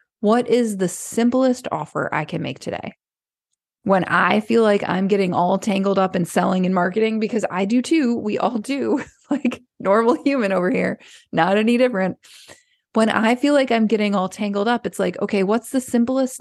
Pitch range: 190-245 Hz